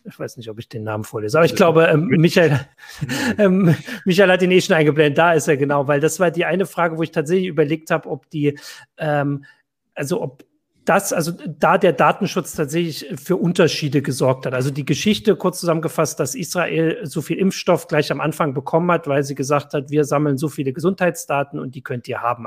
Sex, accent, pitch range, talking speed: male, German, 135-165 Hz, 210 wpm